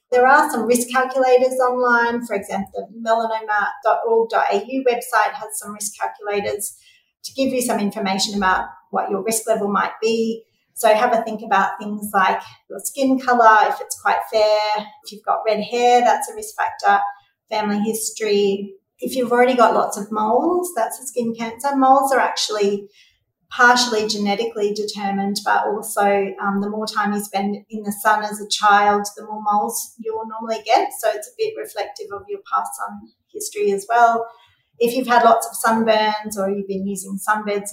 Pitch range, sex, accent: 205-245 Hz, female, Australian